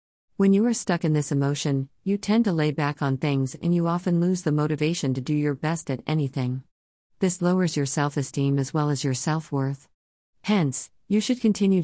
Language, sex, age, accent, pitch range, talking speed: English, female, 50-69, American, 130-170 Hz, 200 wpm